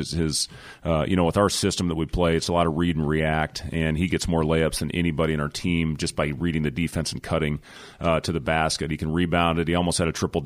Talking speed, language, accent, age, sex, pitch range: 270 wpm, English, American, 30-49, male, 80-85 Hz